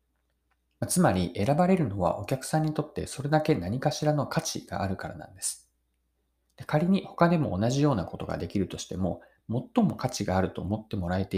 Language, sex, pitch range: Japanese, male, 85-140 Hz